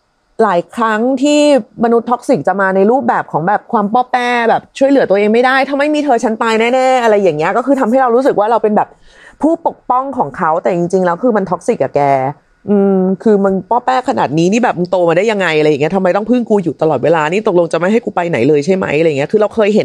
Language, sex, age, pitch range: Thai, female, 30-49, 185-255 Hz